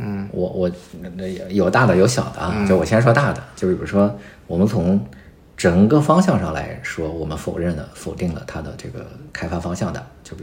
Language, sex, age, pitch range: Chinese, male, 50-69, 75-105 Hz